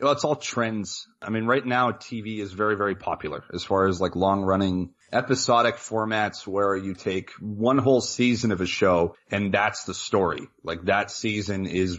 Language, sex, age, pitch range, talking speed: English, male, 30-49, 90-110 Hz, 185 wpm